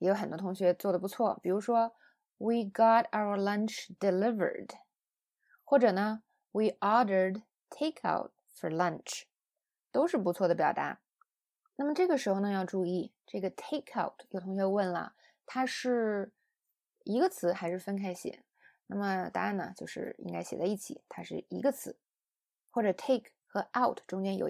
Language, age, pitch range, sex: Chinese, 20-39, 190-255 Hz, female